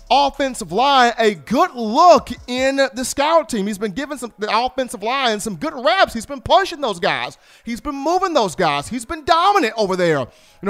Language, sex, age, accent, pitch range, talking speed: English, male, 40-59, American, 190-260 Hz, 195 wpm